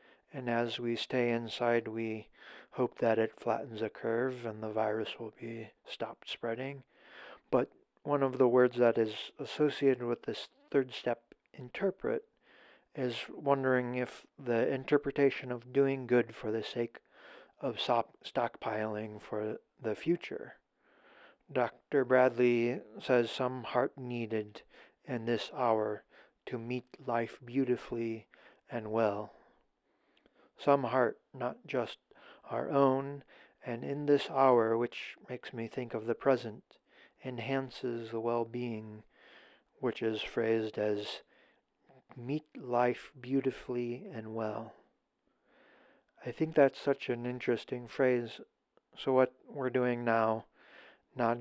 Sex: male